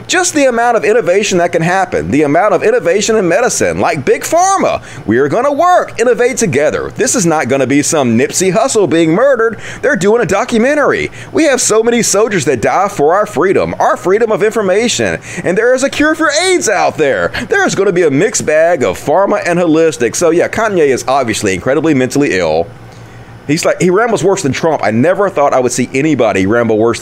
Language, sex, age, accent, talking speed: English, male, 30-49, American, 220 wpm